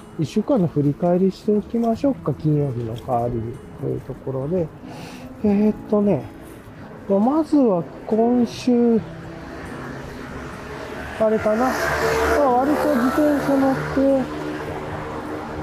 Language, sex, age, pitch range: Japanese, male, 40-59, 140-215 Hz